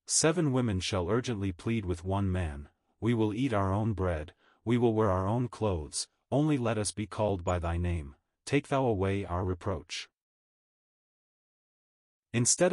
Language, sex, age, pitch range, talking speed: English, male, 40-59, 90-115 Hz, 160 wpm